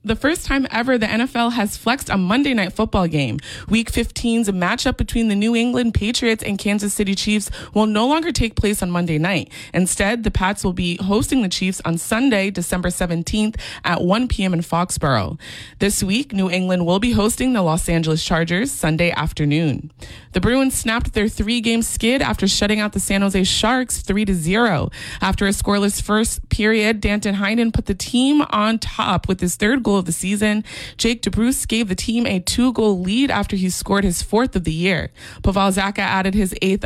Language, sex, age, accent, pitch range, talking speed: English, female, 20-39, American, 180-225 Hz, 190 wpm